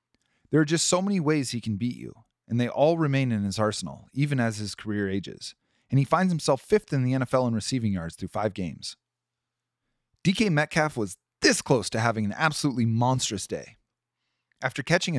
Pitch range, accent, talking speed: 105-140 Hz, American, 195 wpm